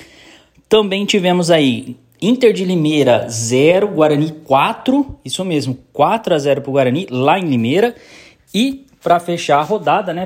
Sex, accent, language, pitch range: male, Brazilian, Portuguese, 135-185 Hz